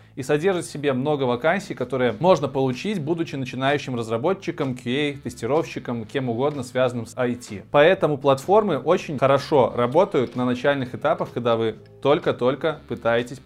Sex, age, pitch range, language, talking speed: male, 20-39, 125-160 Hz, Russian, 140 wpm